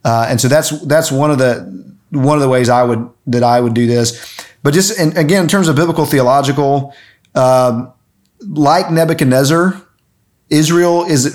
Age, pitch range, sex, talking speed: 30-49, 115-140 Hz, male, 175 wpm